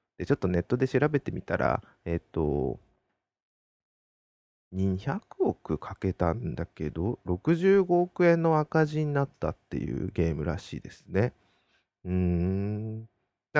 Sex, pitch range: male, 90-145 Hz